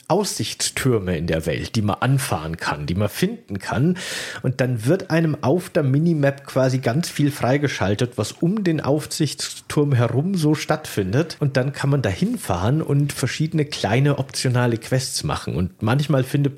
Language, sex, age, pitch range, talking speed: German, male, 40-59, 115-150 Hz, 165 wpm